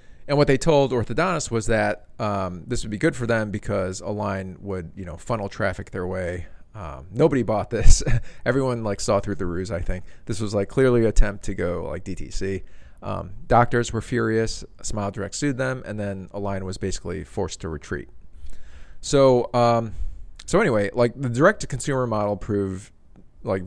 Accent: American